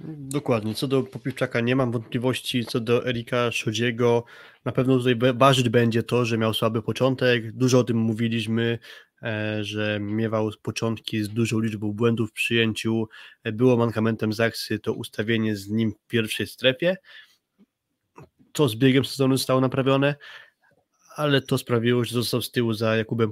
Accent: native